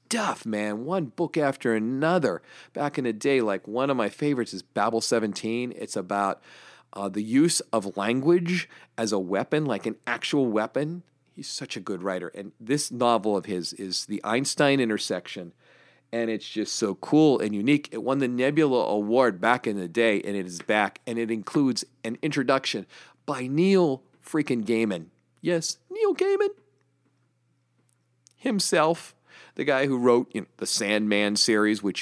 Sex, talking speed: male, 165 wpm